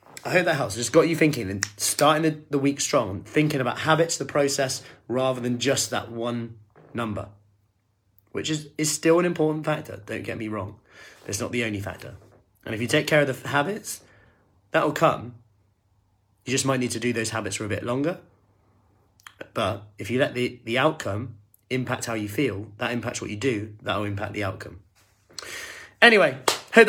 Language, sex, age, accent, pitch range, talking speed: English, male, 30-49, British, 100-140 Hz, 185 wpm